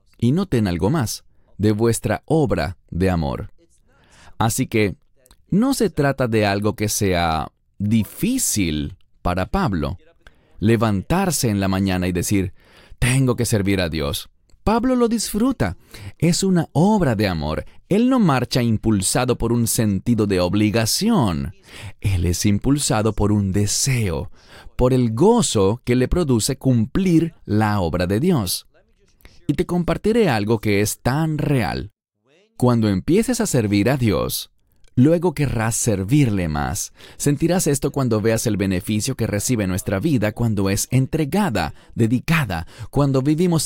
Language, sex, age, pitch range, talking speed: English, male, 30-49, 100-150 Hz, 135 wpm